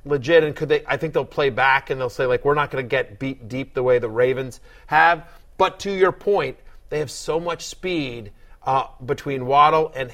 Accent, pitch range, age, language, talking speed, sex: American, 130-170 Hz, 30-49, English, 225 wpm, male